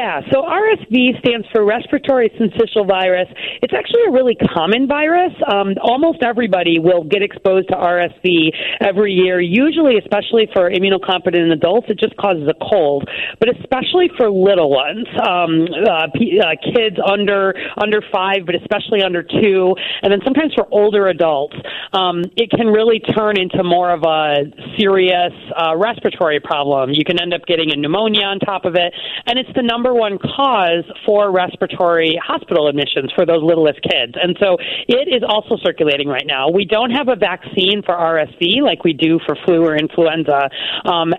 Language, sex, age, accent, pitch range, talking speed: English, female, 40-59, American, 175-220 Hz, 170 wpm